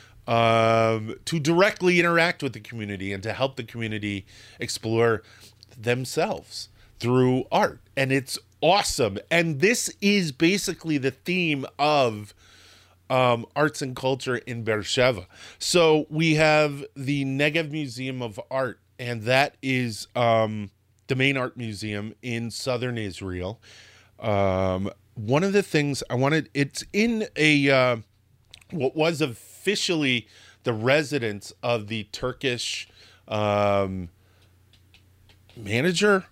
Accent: American